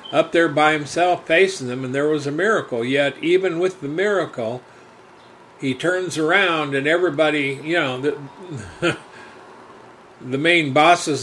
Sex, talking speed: male, 145 wpm